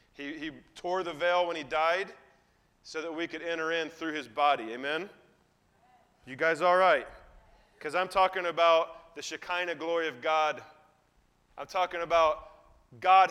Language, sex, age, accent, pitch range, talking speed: English, male, 30-49, American, 165-195 Hz, 160 wpm